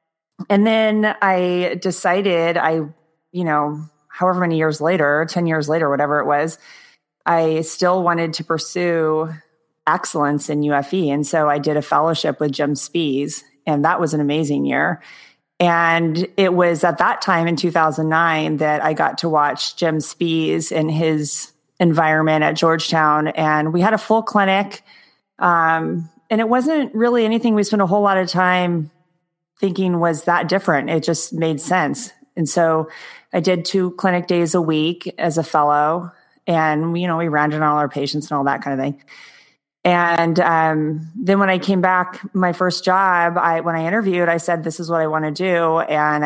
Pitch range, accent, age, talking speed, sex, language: 155-180 Hz, American, 30-49, 180 wpm, female, English